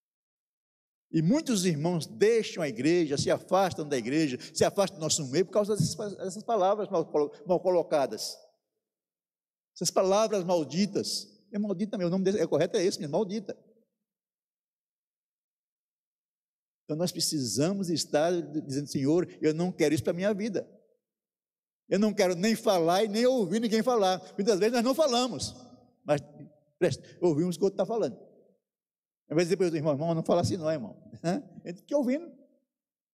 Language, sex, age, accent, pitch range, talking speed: Portuguese, male, 60-79, Brazilian, 160-215 Hz, 160 wpm